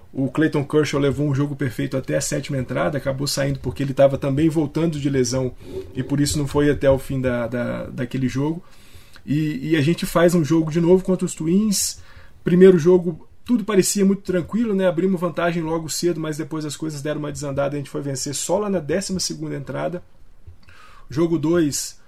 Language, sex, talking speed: Portuguese, male, 205 wpm